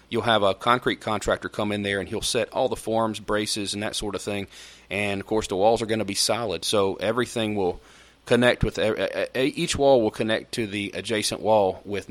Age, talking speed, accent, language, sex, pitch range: 30-49, 225 wpm, American, English, male, 95-110 Hz